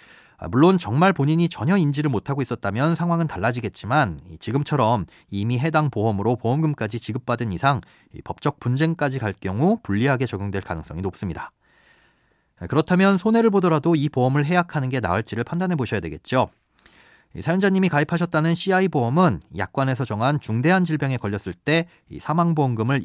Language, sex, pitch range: Korean, male, 110-155 Hz